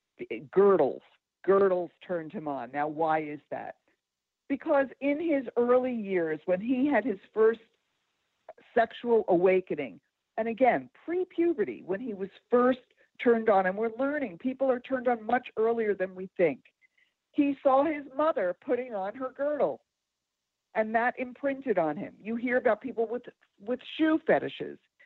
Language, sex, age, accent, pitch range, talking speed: English, female, 50-69, American, 195-275 Hz, 150 wpm